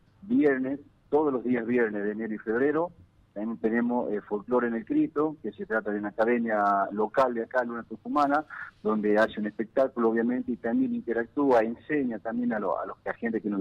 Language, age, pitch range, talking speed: Spanish, 50-69, 105-125 Hz, 200 wpm